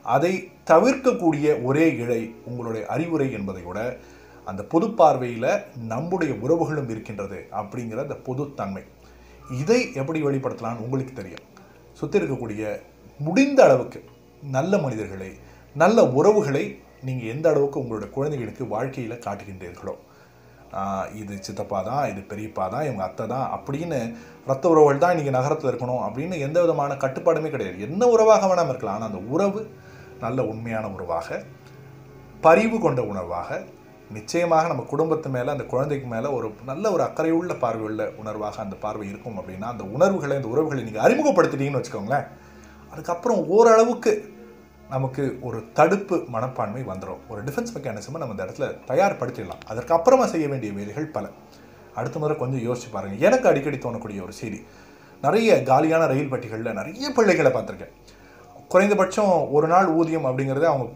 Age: 30-49